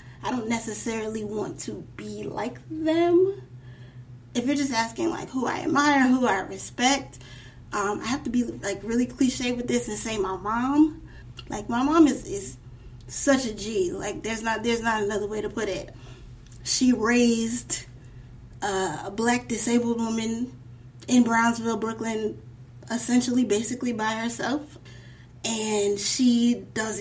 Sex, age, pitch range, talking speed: female, 20-39, 195-245 Hz, 145 wpm